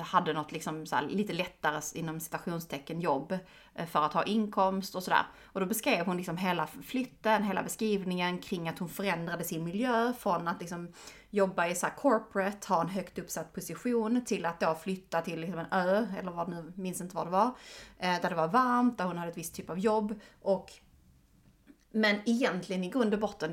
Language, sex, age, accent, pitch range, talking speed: English, female, 30-49, Swedish, 165-205 Hz, 190 wpm